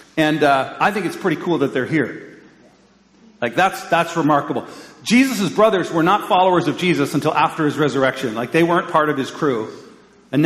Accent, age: American, 40-59